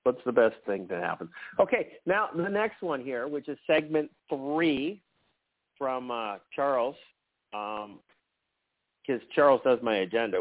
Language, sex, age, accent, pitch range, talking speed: English, male, 50-69, American, 135-170 Hz, 145 wpm